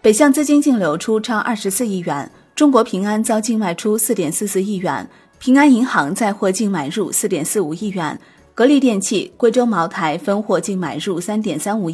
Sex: female